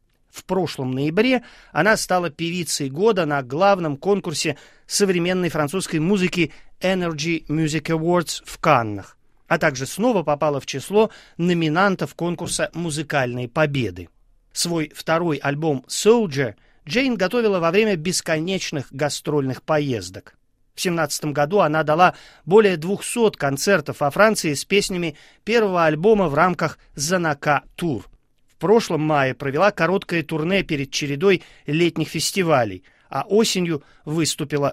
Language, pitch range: Russian, 145-195 Hz